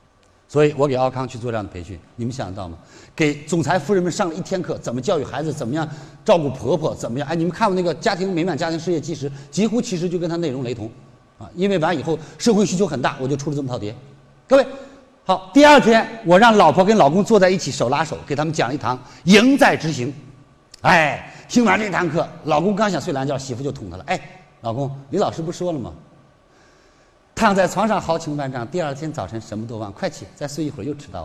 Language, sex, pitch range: Chinese, male, 140-205 Hz